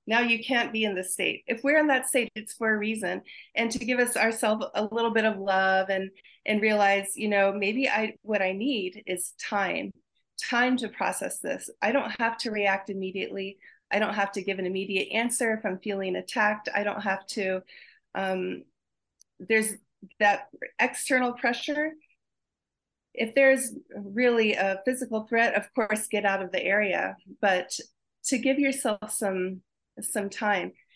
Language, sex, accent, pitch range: English, female, American, 200-245 Hz